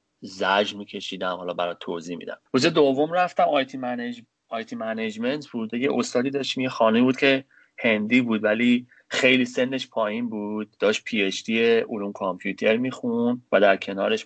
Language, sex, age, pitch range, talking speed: Persian, male, 30-49, 95-130 Hz, 145 wpm